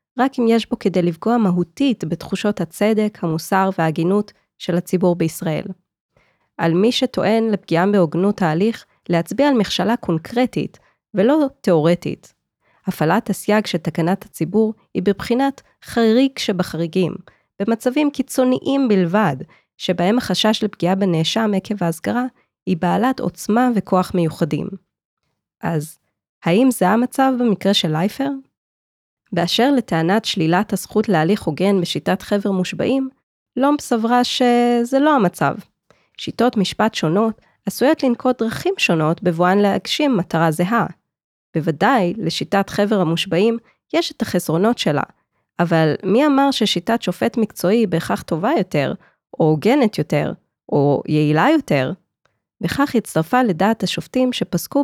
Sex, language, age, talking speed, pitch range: female, Hebrew, 20-39, 120 wpm, 175-235 Hz